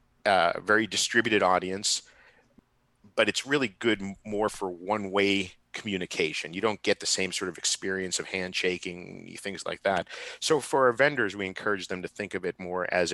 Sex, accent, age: male, American, 50-69